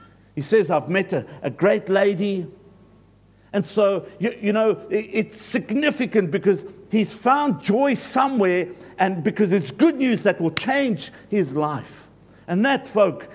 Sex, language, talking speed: male, English, 155 wpm